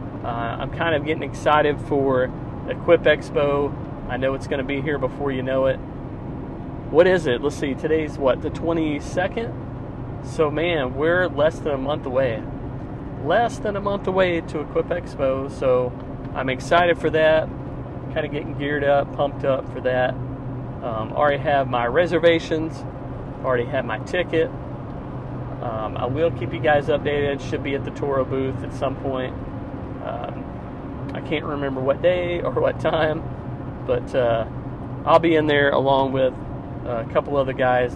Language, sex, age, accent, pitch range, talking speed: English, male, 40-59, American, 130-150 Hz, 165 wpm